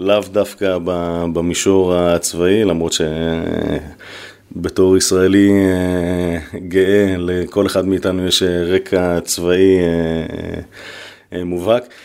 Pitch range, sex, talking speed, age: 90-105 Hz, male, 75 wpm, 30-49